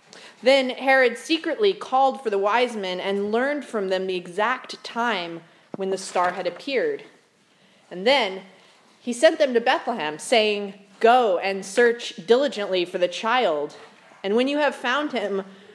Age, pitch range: 30-49, 195-240 Hz